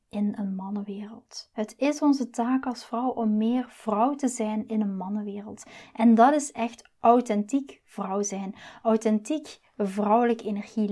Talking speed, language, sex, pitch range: 150 wpm, Dutch, female, 210-245 Hz